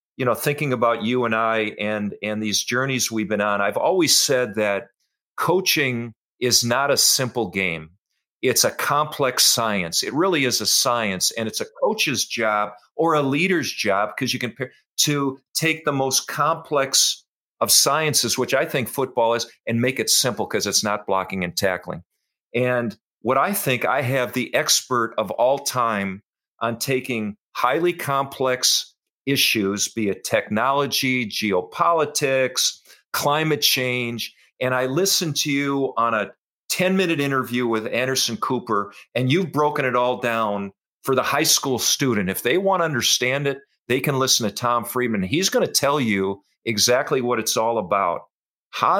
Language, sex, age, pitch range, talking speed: English, male, 50-69, 110-140 Hz, 165 wpm